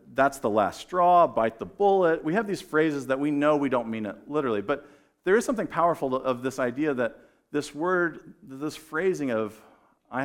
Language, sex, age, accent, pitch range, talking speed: English, male, 50-69, American, 110-150 Hz, 200 wpm